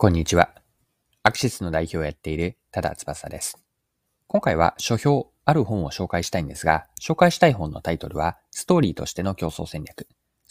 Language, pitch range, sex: Japanese, 85-130 Hz, male